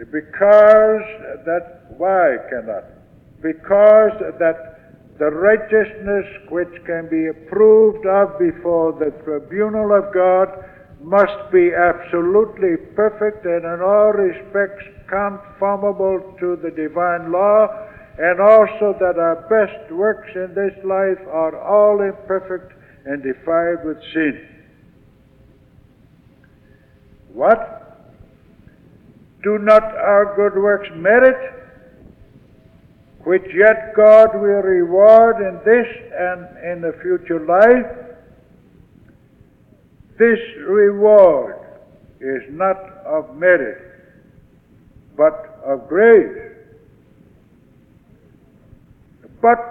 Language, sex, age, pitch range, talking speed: English, male, 60-79, 170-215 Hz, 95 wpm